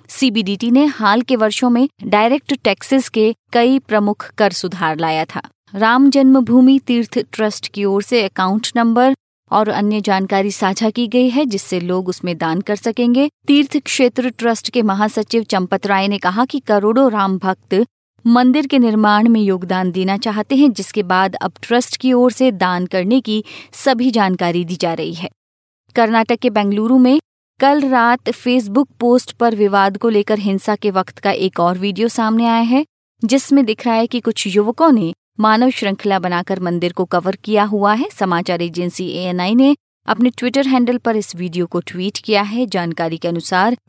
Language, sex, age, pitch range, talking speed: Hindi, female, 30-49, 190-245 Hz, 180 wpm